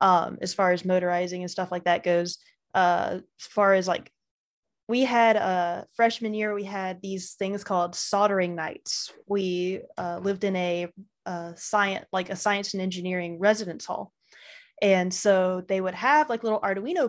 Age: 20-39